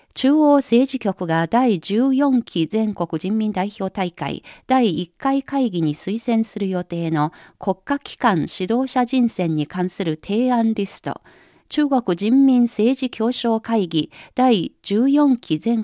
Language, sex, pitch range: Japanese, female, 175-255 Hz